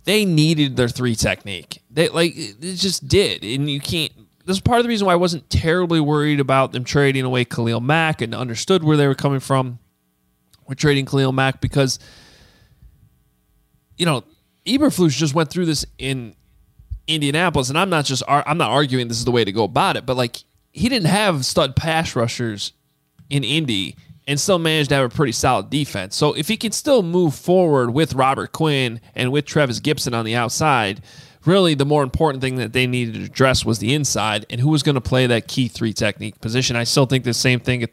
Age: 20-39